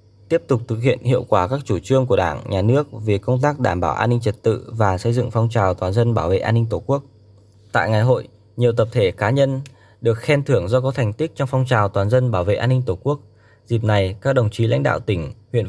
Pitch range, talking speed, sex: 105-130 Hz, 270 wpm, male